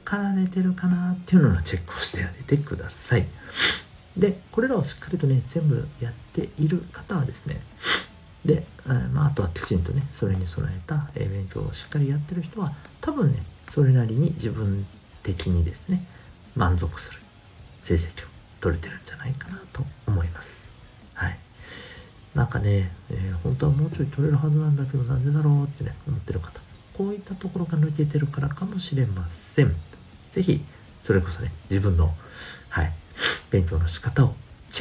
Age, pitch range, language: 40-59, 90-150 Hz, Japanese